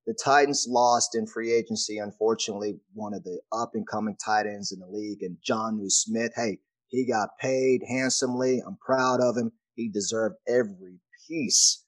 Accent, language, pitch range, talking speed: American, English, 110-135 Hz, 165 wpm